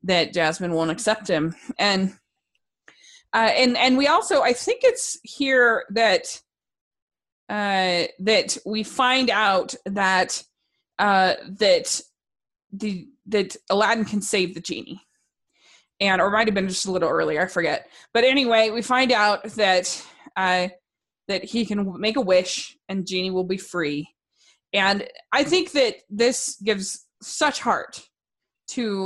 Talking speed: 145 wpm